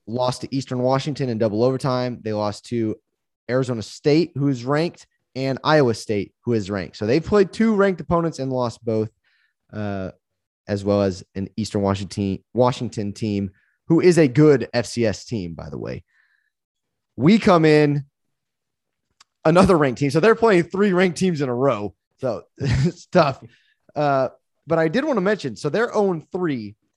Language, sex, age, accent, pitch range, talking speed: English, male, 20-39, American, 110-160 Hz, 170 wpm